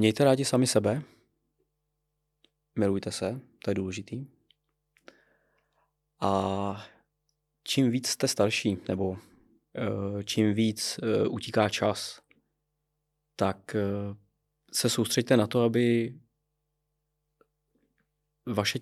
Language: Czech